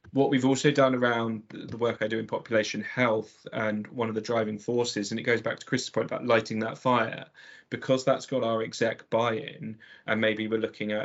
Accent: British